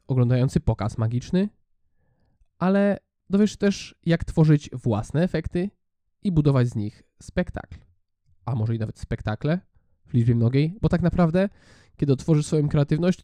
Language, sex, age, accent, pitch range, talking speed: Polish, male, 20-39, native, 110-160 Hz, 140 wpm